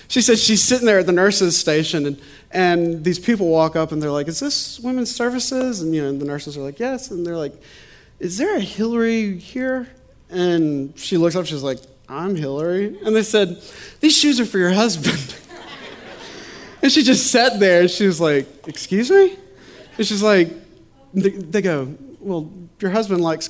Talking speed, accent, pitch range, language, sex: 195 wpm, American, 155-225 Hz, English, male